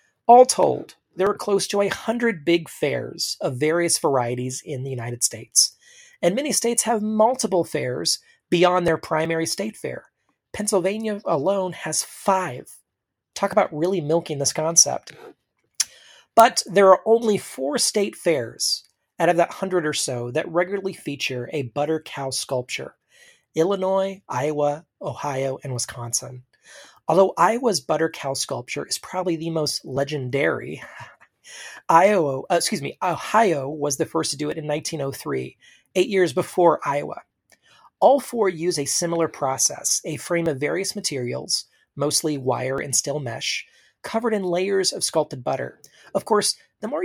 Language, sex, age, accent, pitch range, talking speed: English, male, 30-49, American, 145-200 Hz, 150 wpm